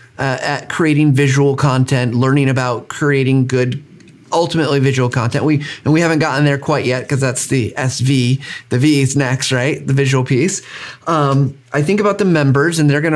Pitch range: 135-165 Hz